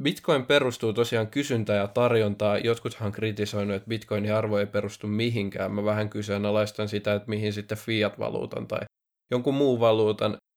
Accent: native